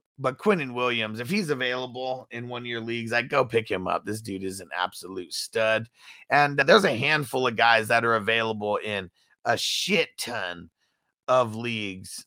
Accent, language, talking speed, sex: American, English, 190 wpm, male